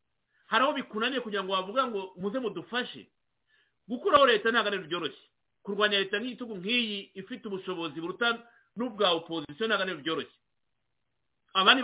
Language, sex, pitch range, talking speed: English, male, 180-225 Hz, 115 wpm